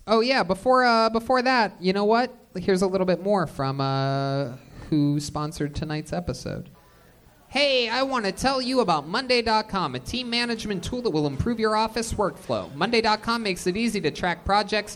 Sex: male